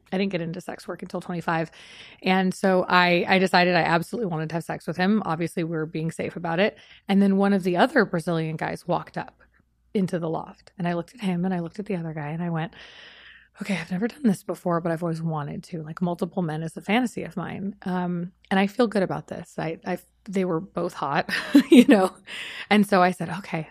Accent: American